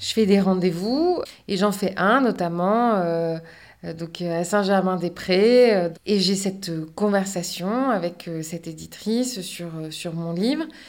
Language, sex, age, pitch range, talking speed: French, female, 30-49, 180-220 Hz, 130 wpm